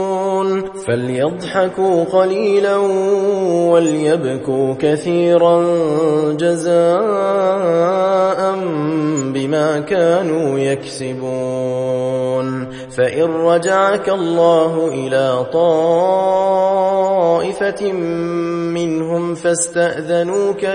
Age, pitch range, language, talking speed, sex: 20-39, 160-190 Hz, Indonesian, 45 wpm, male